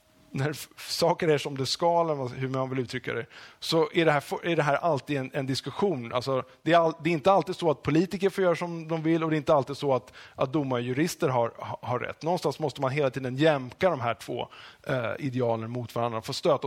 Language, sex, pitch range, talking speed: English, male, 125-165 Hz, 235 wpm